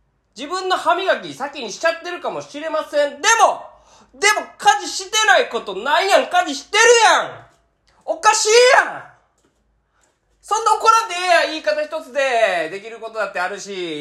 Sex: male